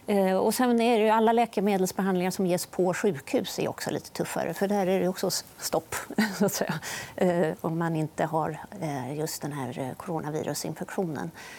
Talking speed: 170 wpm